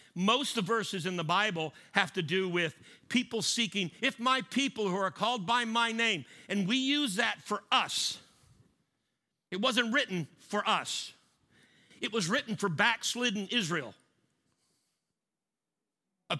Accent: American